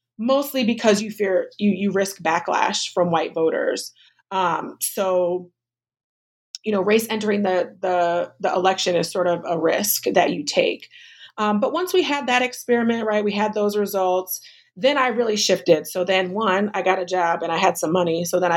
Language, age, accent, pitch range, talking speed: English, 30-49, American, 180-220 Hz, 190 wpm